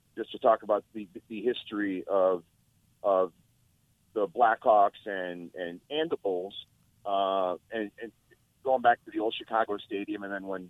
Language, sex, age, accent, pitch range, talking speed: English, male, 40-59, American, 100-130 Hz, 165 wpm